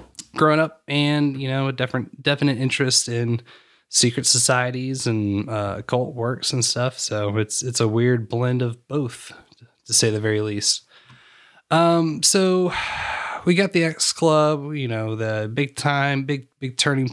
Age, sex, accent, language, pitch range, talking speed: 20-39, male, American, English, 115-140 Hz, 160 wpm